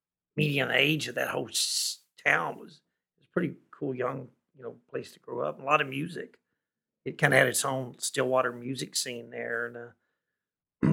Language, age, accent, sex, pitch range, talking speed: English, 50-69, American, male, 120-160 Hz, 200 wpm